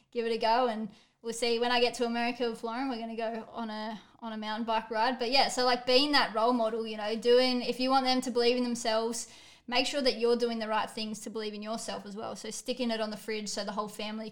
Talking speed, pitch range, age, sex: 285 wpm, 220-245 Hz, 20-39, female